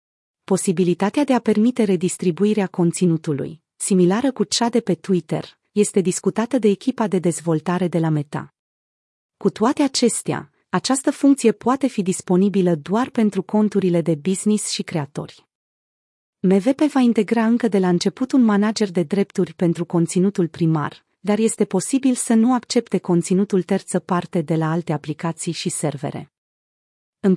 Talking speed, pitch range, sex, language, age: 145 wpm, 175-215 Hz, female, Romanian, 30-49